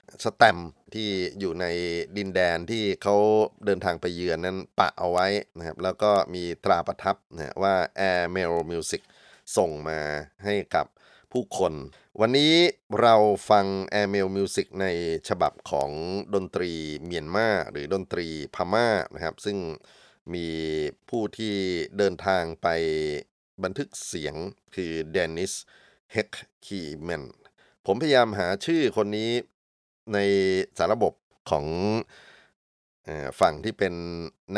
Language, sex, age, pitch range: Thai, male, 30-49, 85-105 Hz